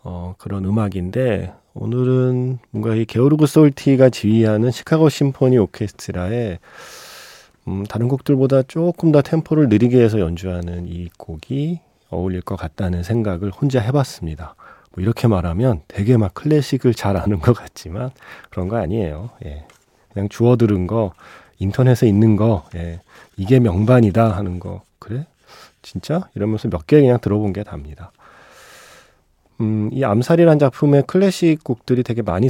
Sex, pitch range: male, 95-130 Hz